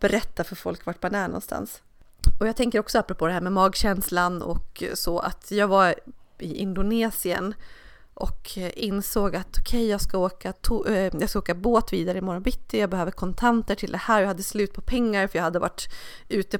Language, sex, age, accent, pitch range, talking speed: Swedish, female, 30-49, native, 180-215 Hz, 200 wpm